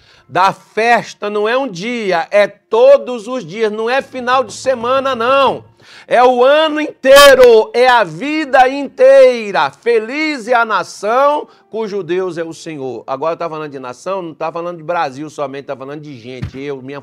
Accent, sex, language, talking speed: Brazilian, male, Portuguese, 180 wpm